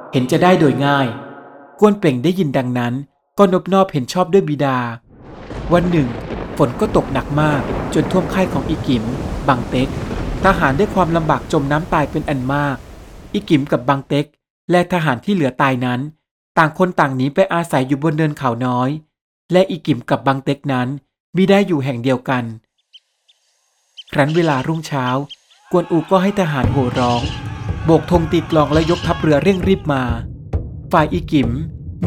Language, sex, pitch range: Thai, male, 130-170 Hz